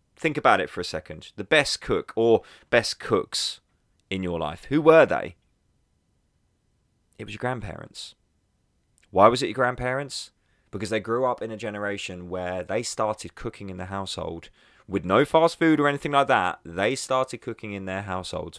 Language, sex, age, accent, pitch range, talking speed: English, male, 20-39, British, 95-125 Hz, 180 wpm